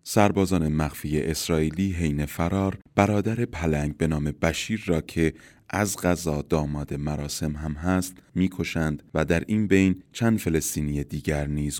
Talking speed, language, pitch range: 135 wpm, Persian, 75-100 Hz